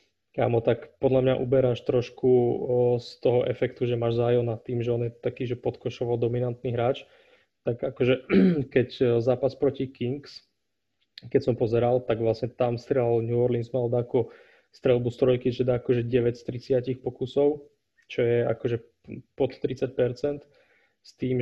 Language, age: Slovak, 20-39